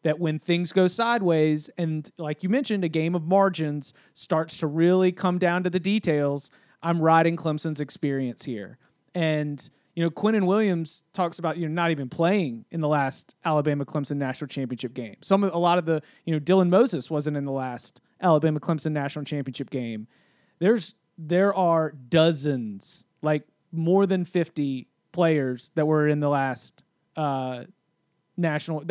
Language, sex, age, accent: English, male, 30-49, American